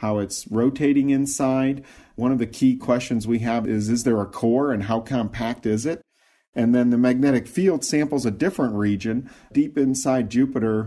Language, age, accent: English, 40-59, American